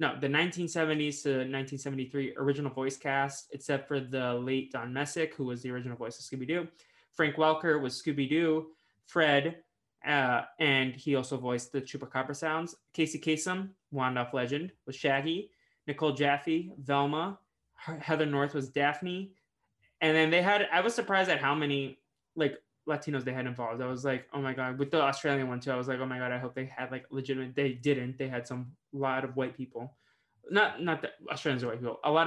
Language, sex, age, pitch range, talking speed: English, male, 20-39, 130-155 Hz, 190 wpm